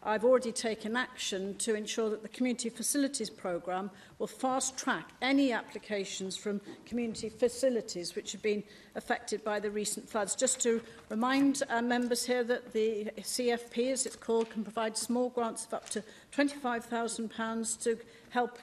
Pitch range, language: 200-230 Hz, English